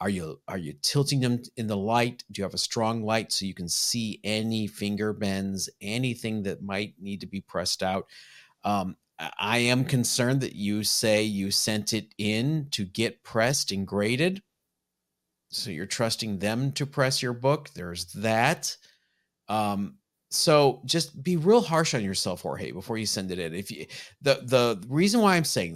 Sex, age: male, 40-59